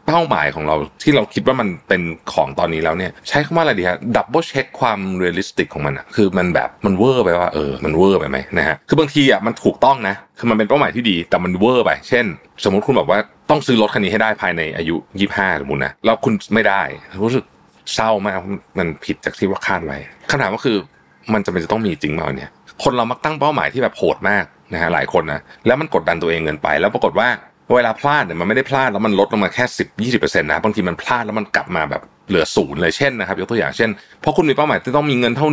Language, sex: Thai, male